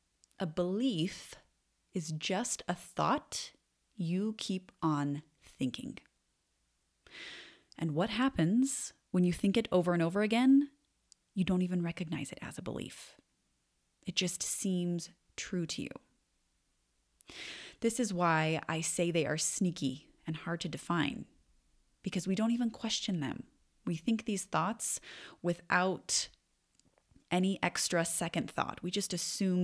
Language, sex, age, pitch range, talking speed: English, female, 30-49, 155-200 Hz, 130 wpm